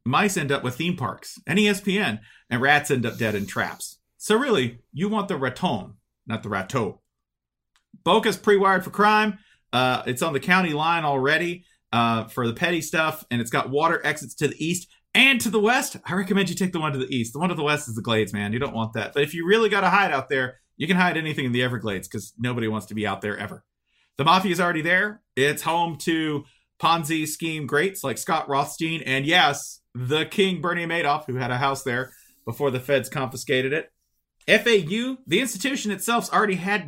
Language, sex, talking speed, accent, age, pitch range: English, male, 215 wpm, American, 40-59, 125-190 Hz